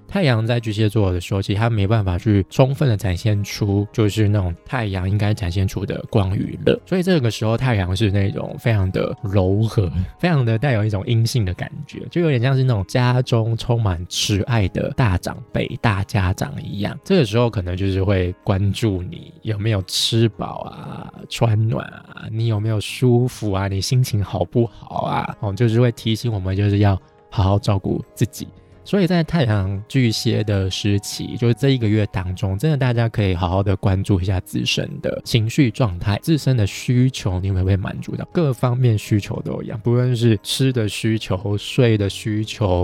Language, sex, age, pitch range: Chinese, male, 20-39, 100-125 Hz